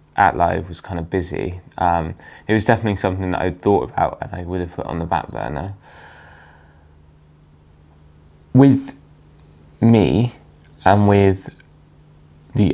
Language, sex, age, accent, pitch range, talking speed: English, male, 10-29, British, 80-100 Hz, 140 wpm